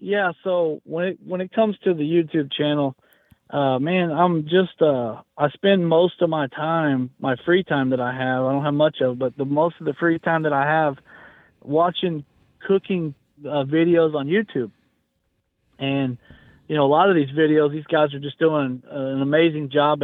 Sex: male